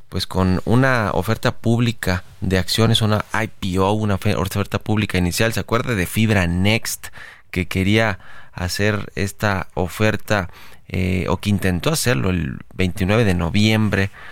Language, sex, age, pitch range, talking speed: Spanish, male, 30-49, 95-110 Hz, 135 wpm